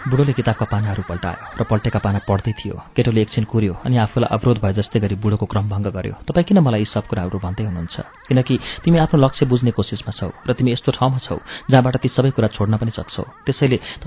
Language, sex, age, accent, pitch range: English, male, 30-49, Indian, 105-130 Hz